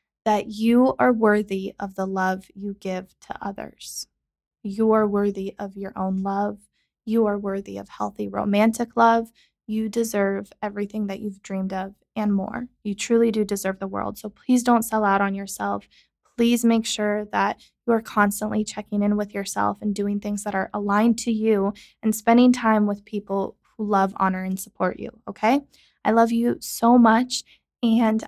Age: 20-39